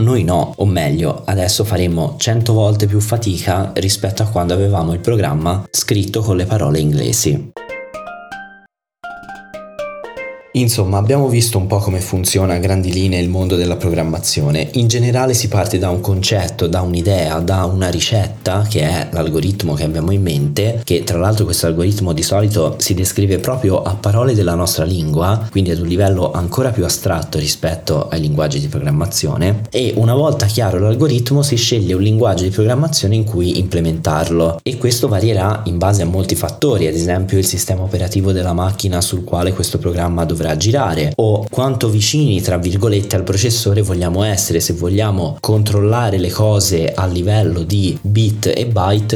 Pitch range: 90-110 Hz